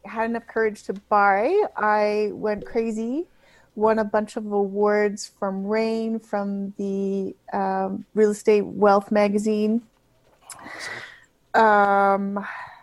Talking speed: 110 wpm